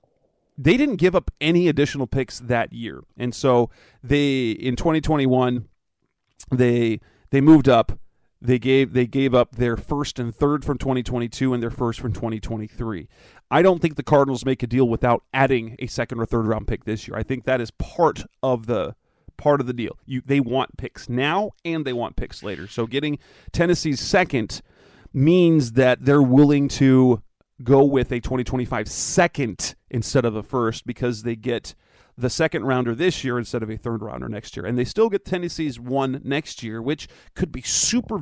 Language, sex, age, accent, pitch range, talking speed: English, male, 30-49, American, 120-145 Hz, 185 wpm